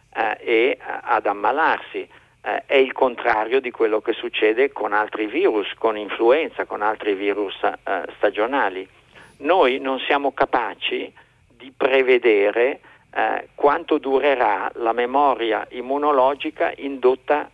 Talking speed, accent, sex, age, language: 105 wpm, native, male, 50-69, Italian